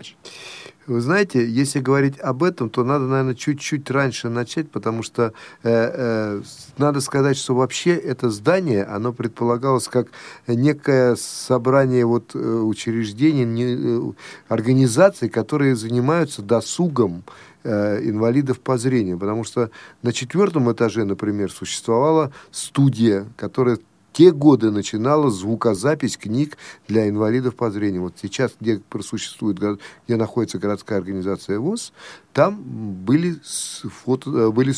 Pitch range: 110-140 Hz